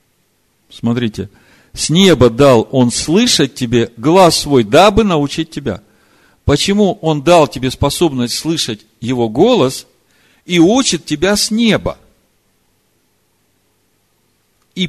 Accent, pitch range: native, 105-170 Hz